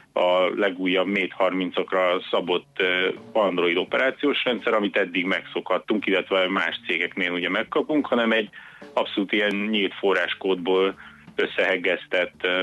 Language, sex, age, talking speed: Hungarian, male, 30-49, 110 wpm